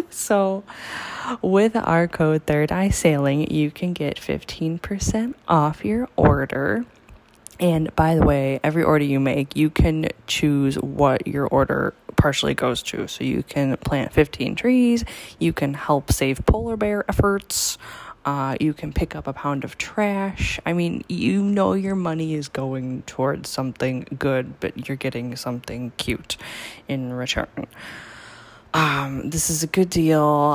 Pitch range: 135-195 Hz